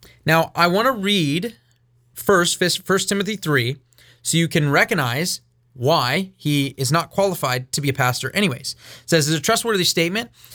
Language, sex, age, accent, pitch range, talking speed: English, male, 30-49, American, 130-195 Hz, 165 wpm